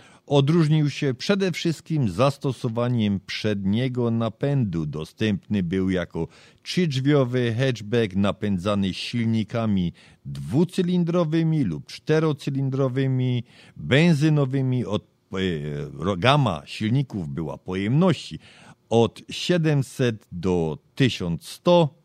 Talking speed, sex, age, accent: 70 wpm, male, 50-69, native